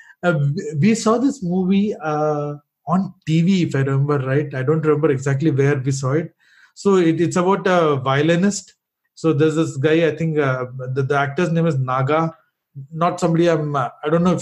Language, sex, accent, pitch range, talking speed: English, male, Indian, 145-170 Hz, 190 wpm